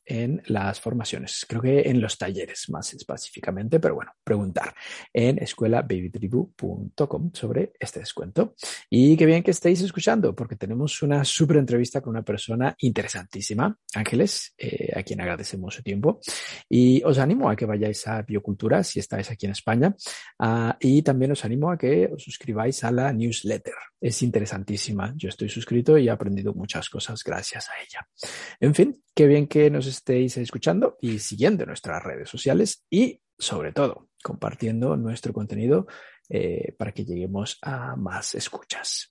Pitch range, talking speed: 110-155 Hz, 160 wpm